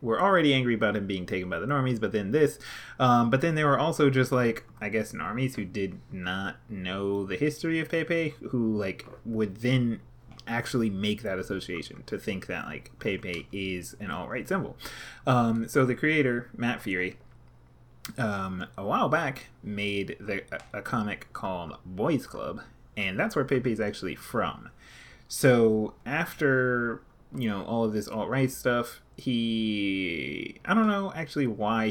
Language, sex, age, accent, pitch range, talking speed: English, male, 30-49, American, 100-125 Hz, 165 wpm